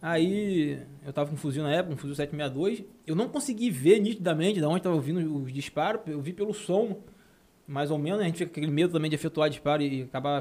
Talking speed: 235 wpm